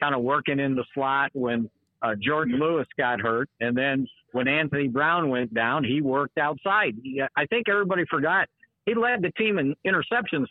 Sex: male